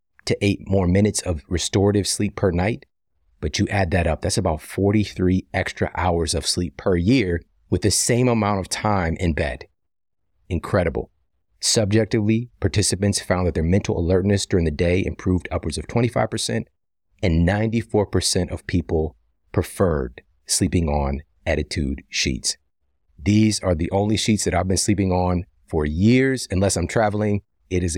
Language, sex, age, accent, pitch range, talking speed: English, male, 30-49, American, 80-105 Hz, 155 wpm